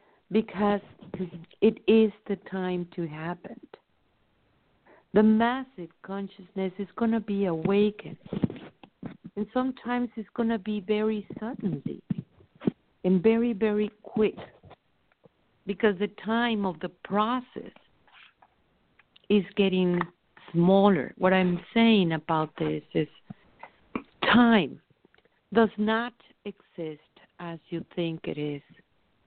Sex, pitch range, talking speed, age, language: female, 175-210 Hz, 105 wpm, 50-69, English